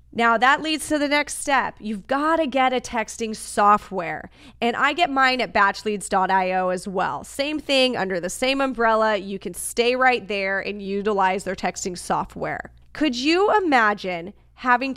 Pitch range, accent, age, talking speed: 205-265 Hz, American, 20-39, 170 wpm